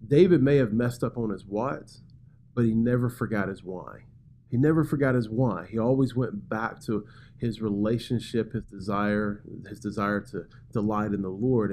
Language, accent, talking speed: English, American, 180 wpm